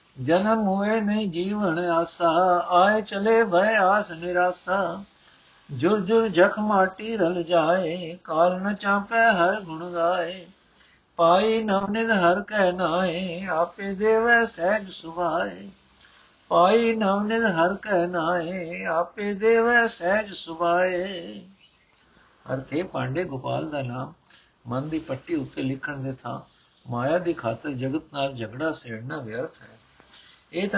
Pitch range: 145-190 Hz